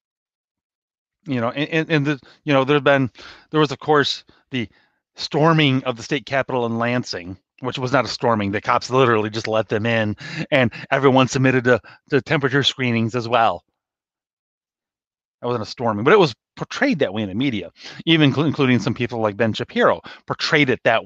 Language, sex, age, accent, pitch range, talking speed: English, male, 30-49, American, 120-155 Hz, 190 wpm